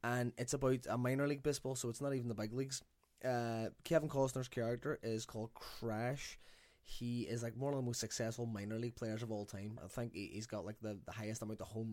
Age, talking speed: 20-39, 230 wpm